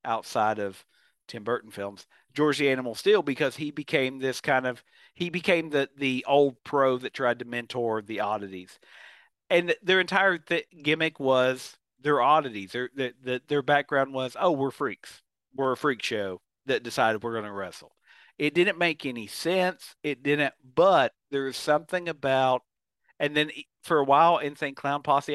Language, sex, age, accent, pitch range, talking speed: English, male, 50-69, American, 120-150 Hz, 175 wpm